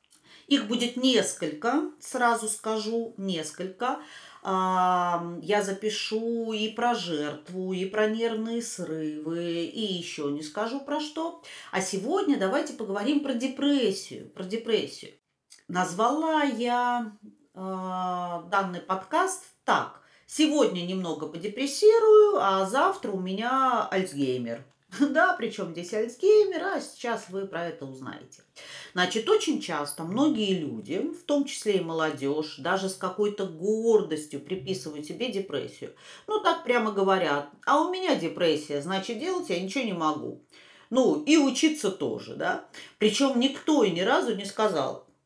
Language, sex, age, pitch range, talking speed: Russian, female, 40-59, 180-270 Hz, 125 wpm